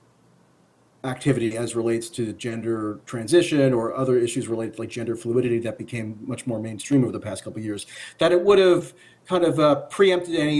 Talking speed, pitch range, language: 195 wpm, 125-160 Hz, English